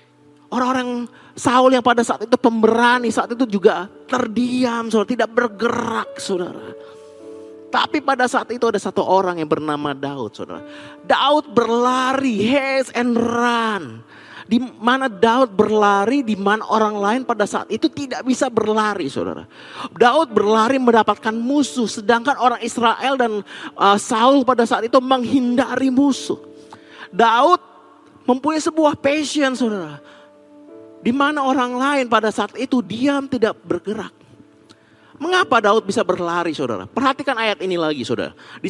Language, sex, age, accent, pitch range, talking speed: Indonesian, male, 30-49, native, 200-270 Hz, 130 wpm